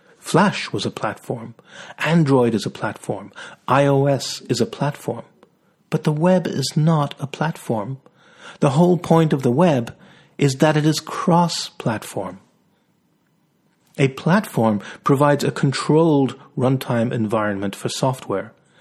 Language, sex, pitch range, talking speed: English, male, 120-155 Hz, 125 wpm